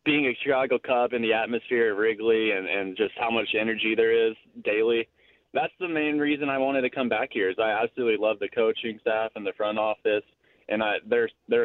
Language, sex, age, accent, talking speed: English, male, 20-39, American, 220 wpm